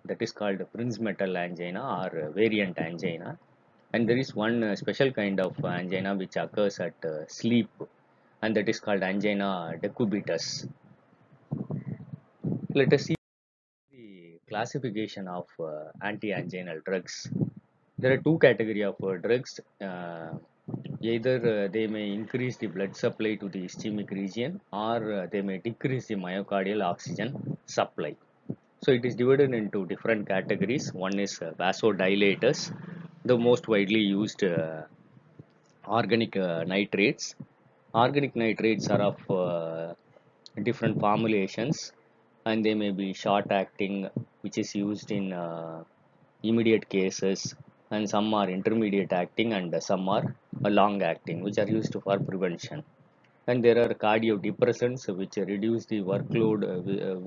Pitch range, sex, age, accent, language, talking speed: 95-115 Hz, male, 20-39, native, Tamil, 130 wpm